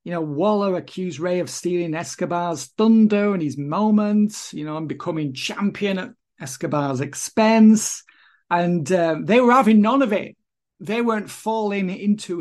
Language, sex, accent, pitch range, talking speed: English, male, British, 165-210 Hz, 155 wpm